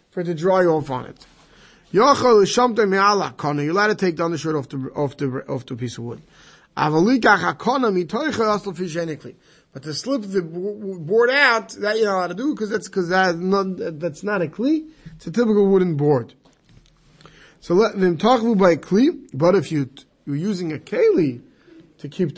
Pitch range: 145-200 Hz